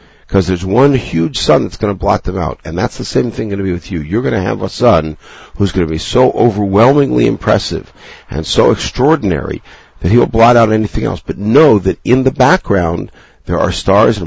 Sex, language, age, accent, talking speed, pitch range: male, English, 60-79, American, 225 wpm, 80-100 Hz